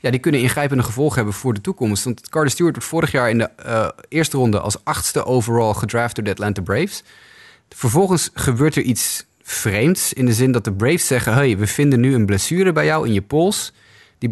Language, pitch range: Dutch, 105-140 Hz